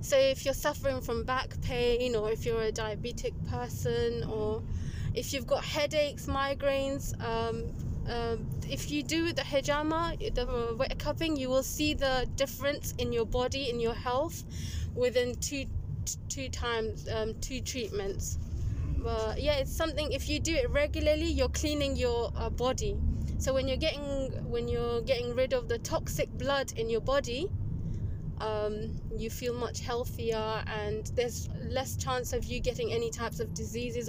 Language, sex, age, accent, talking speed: English, female, 20-39, British, 160 wpm